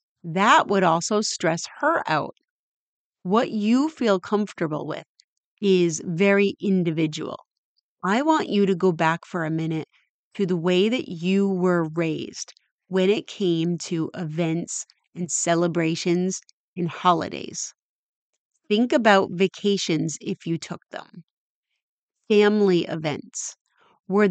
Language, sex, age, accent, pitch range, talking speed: English, female, 30-49, American, 170-200 Hz, 120 wpm